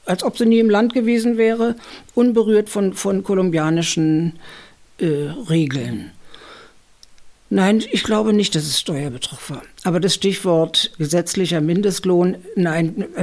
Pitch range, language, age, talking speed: 150-205 Hz, German, 60-79, 125 wpm